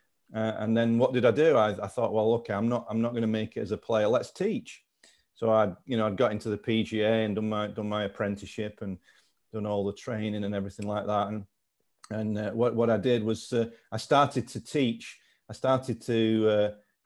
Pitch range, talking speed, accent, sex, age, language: 105-115 Hz, 235 wpm, British, male, 40-59, English